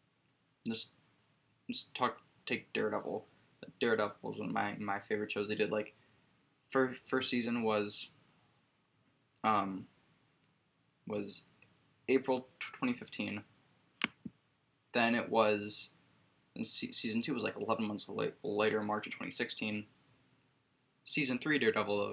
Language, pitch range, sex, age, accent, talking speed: English, 105-130 Hz, male, 10-29, American, 120 wpm